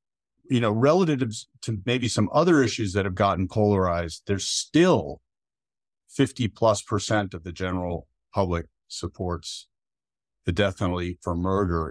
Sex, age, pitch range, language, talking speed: male, 50-69, 95-125 Hz, English, 135 wpm